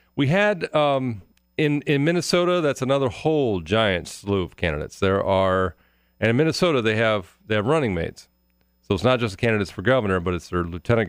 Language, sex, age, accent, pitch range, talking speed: English, male, 40-59, American, 80-115 Hz, 190 wpm